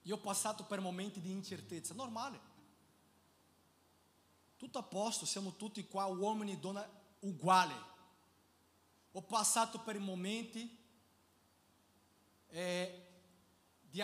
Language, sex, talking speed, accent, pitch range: Italian, male, 105 wpm, Brazilian, 115-195 Hz